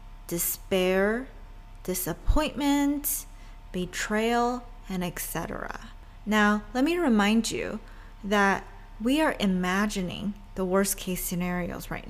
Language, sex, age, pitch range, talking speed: English, female, 20-39, 190-240 Hz, 90 wpm